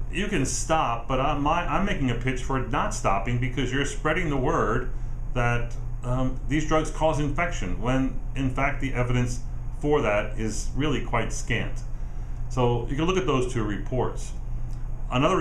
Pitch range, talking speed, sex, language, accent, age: 115-135 Hz, 165 wpm, male, English, American, 40-59